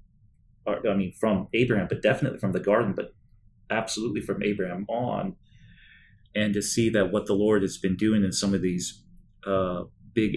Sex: male